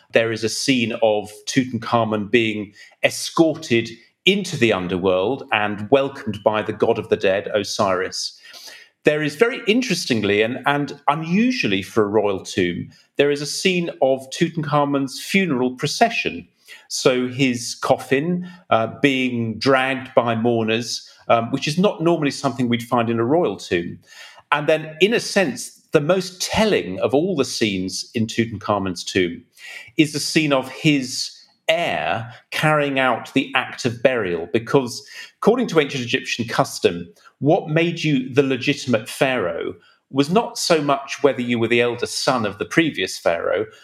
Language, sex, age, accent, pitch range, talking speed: English, male, 40-59, British, 115-160 Hz, 155 wpm